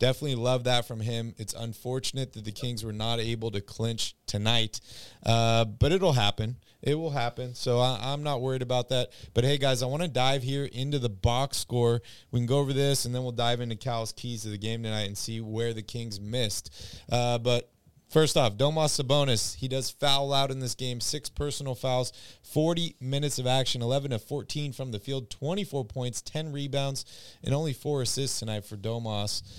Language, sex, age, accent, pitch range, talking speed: English, male, 30-49, American, 110-135 Hz, 205 wpm